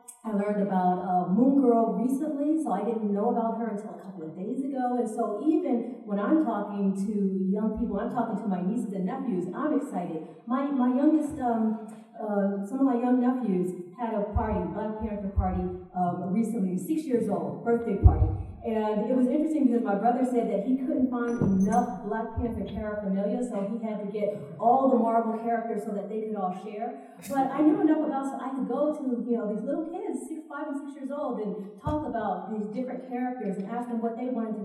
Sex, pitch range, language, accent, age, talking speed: female, 200-245 Hz, English, American, 40-59, 220 wpm